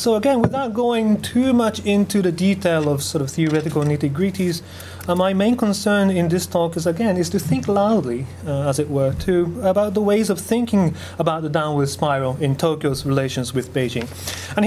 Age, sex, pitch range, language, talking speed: 30-49, male, 150-210 Hz, English, 190 wpm